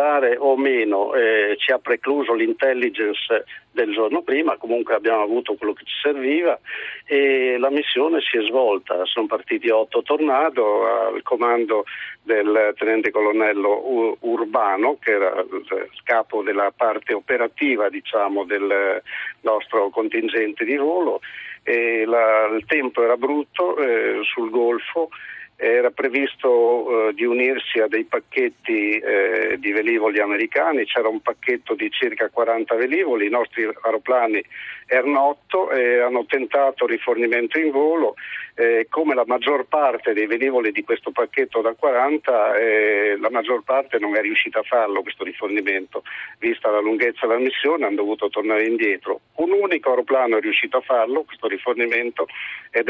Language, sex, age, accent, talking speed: Italian, male, 50-69, native, 140 wpm